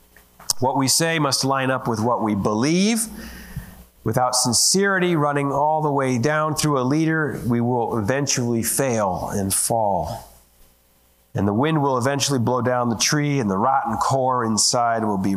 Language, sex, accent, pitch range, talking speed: English, male, American, 105-155 Hz, 165 wpm